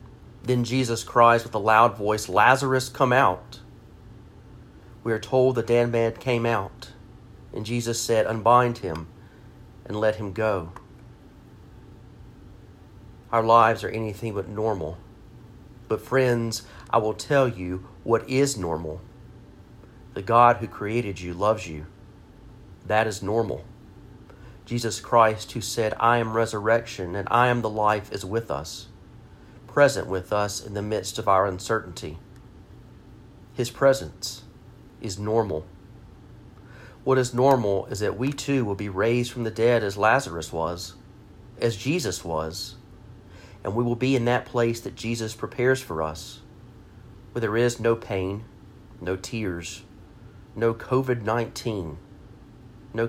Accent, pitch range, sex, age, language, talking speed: American, 100-120 Hz, male, 40-59, English, 140 wpm